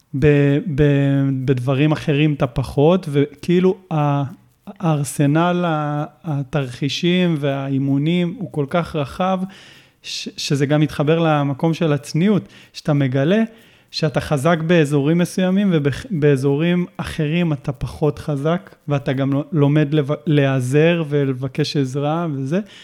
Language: Hebrew